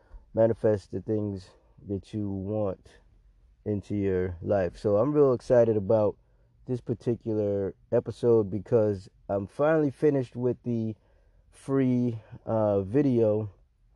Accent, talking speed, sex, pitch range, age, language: American, 110 wpm, male, 95-115 Hz, 20-39, English